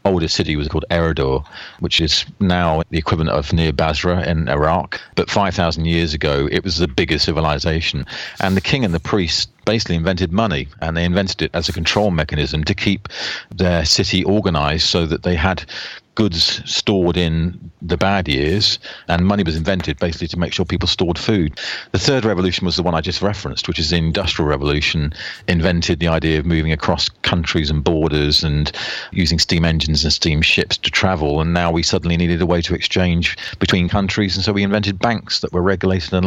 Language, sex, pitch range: English, male, 80-95 Hz